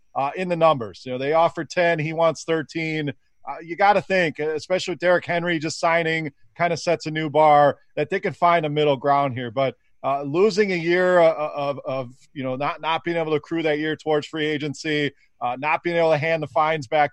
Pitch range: 150-185 Hz